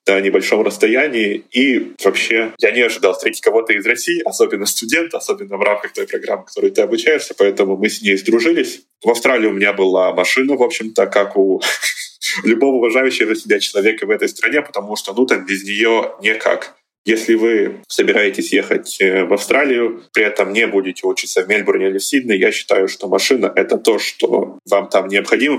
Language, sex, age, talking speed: Russian, male, 20-39, 185 wpm